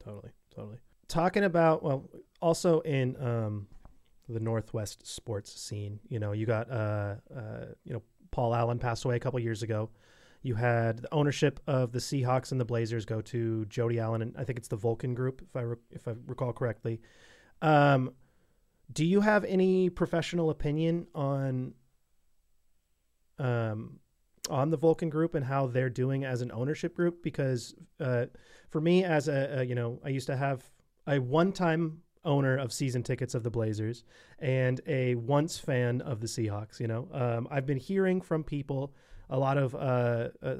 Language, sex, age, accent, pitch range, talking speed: English, male, 30-49, American, 115-140 Hz, 175 wpm